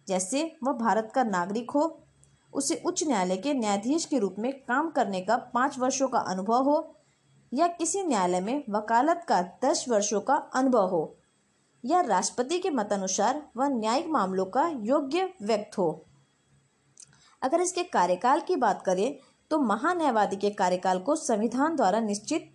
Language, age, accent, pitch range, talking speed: Hindi, 20-39, native, 205-305 Hz, 155 wpm